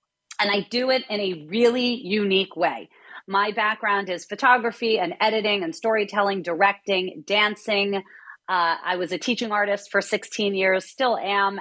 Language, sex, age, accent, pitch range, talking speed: English, female, 30-49, American, 185-225 Hz, 155 wpm